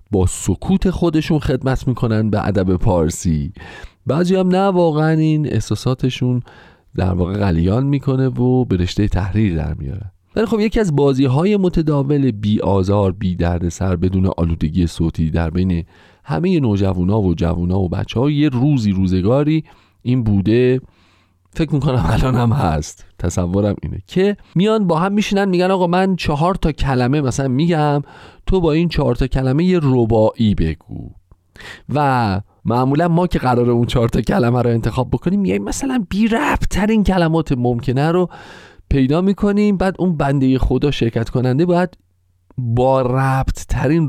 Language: Persian